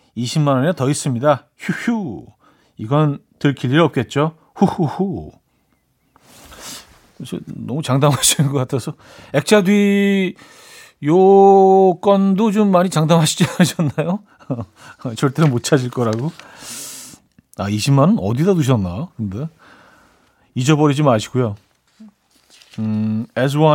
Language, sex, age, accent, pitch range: Korean, male, 40-59, native, 125-165 Hz